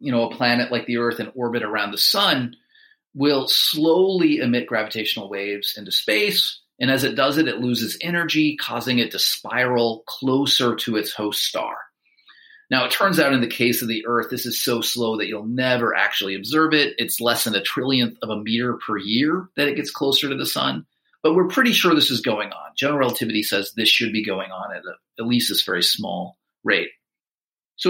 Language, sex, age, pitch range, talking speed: English, male, 40-59, 110-145 Hz, 210 wpm